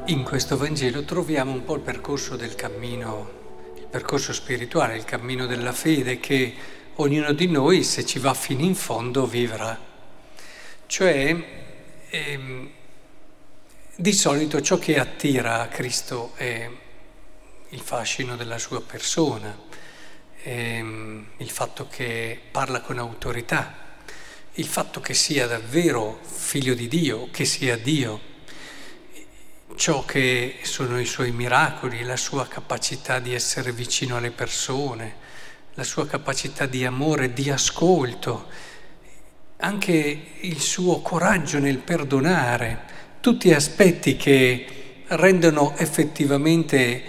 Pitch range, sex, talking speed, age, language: 125-160 Hz, male, 115 wpm, 50-69, Italian